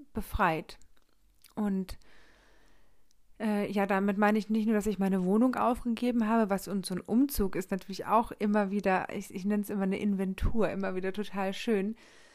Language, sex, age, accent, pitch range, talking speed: German, female, 40-59, German, 200-225 Hz, 175 wpm